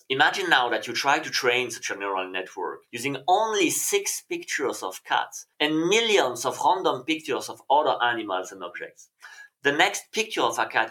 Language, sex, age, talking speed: English, male, 30-49, 180 wpm